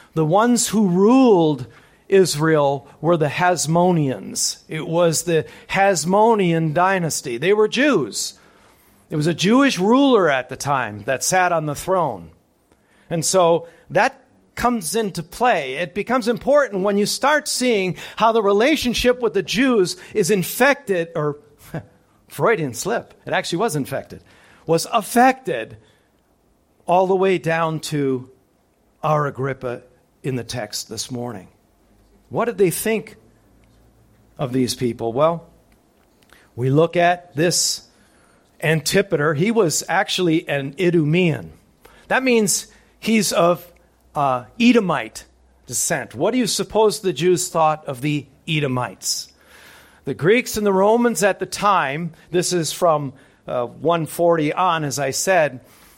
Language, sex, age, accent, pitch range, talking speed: English, male, 50-69, American, 140-205 Hz, 130 wpm